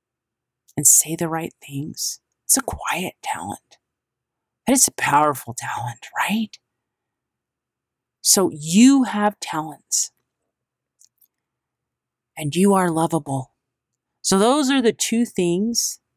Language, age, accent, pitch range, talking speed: English, 40-59, American, 125-160 Hz, 110 wpm